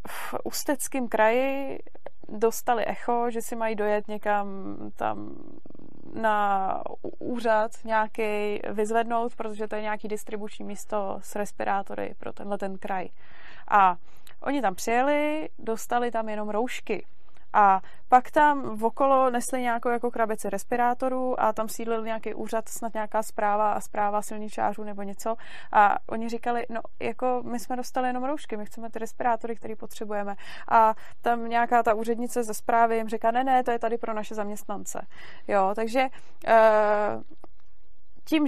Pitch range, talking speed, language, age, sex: 210-240 Hz, 145 wpm, Czech, 20-39, female